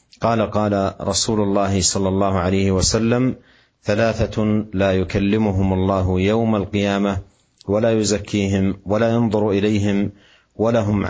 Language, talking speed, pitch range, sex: Indonesian, 110 wpm, 95-115 Hz, male